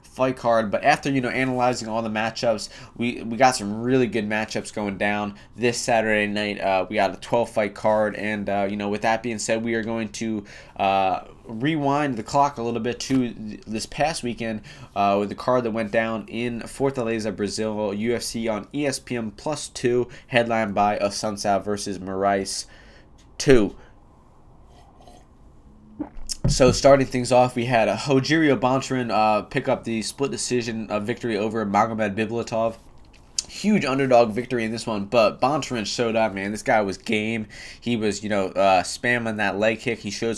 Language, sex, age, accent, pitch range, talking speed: English, male, 20-39, American, 105-120 Hz, 175 wpm